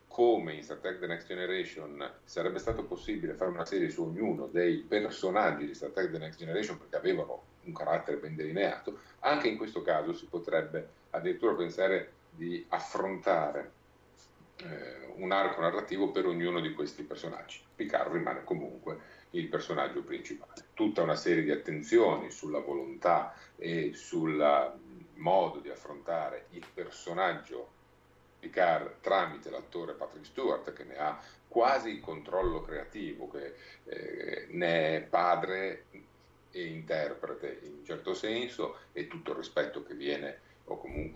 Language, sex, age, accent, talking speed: Italian, male, 40-59, native, 145 wpm